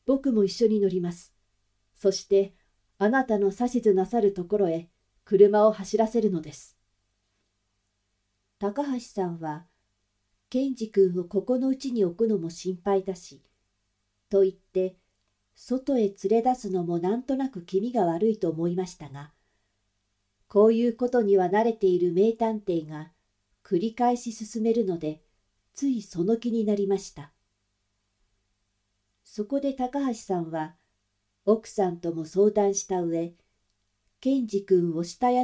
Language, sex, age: Japanese, female, 50-69